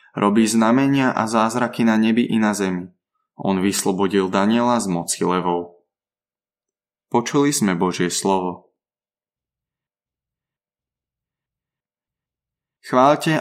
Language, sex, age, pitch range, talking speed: Slovak, male, 20-39, 100-120 Hz, 90 wpm